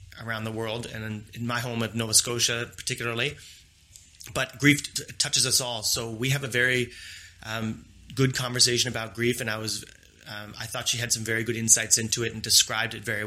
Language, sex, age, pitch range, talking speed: English, male, 30-49, 115-140 Hz, 200 wpm